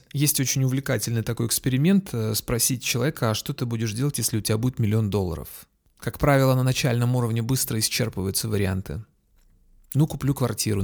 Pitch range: 105-140 Hz